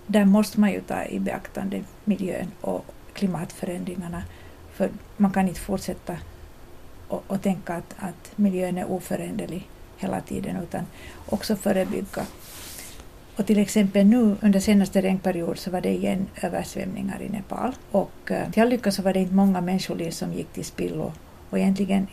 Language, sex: Swedish, female